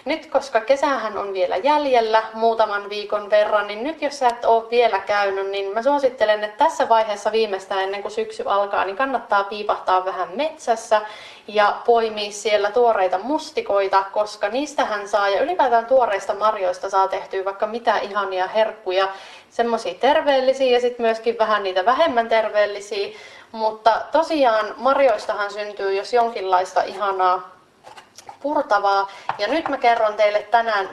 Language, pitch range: Finnish, 195-240 Hz